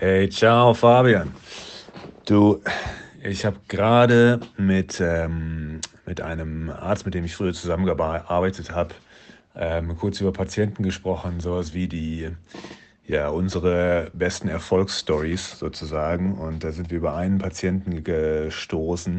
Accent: German